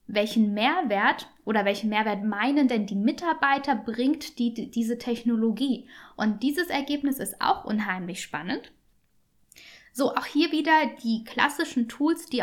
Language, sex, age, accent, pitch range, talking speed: German, female, 10-29, German, 215-270 Hz, 140 wpm